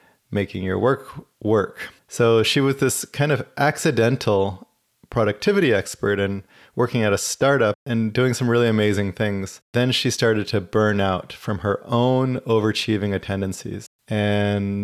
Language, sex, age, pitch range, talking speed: English, male, 30-49, 105-120 Hz, 145 wpm